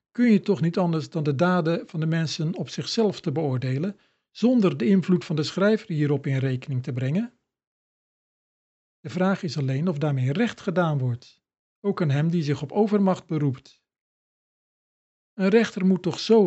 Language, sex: Dutch, male